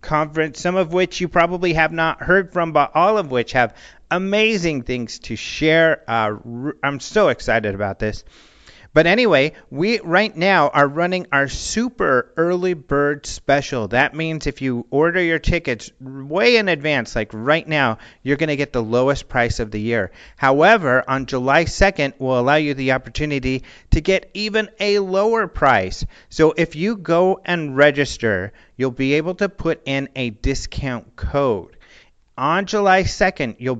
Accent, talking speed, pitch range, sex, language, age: American, 165 wpm, 120-165 Hz, male, English, 40-59